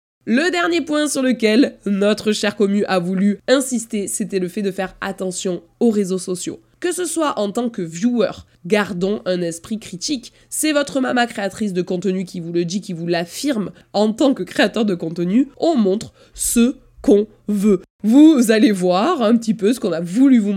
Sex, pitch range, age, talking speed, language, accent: female, 185-240 Hz, 20-39, 195 wpm, French, French